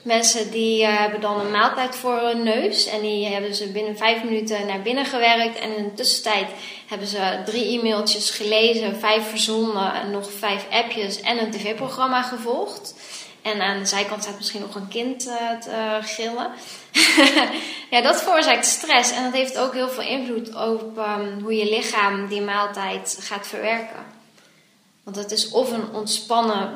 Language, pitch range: Dutch, 205-235 Hz